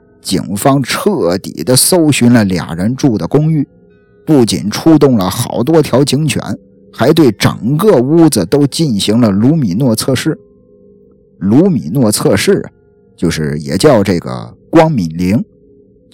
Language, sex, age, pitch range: Chinese, male, 50-69, 95-150 Hz